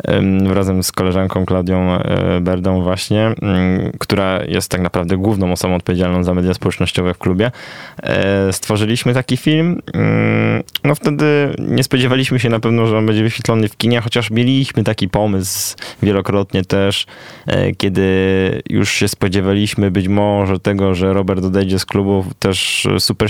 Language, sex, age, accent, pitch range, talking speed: Polish, male, 20-39, native, 95-115 Hz, 140 wpm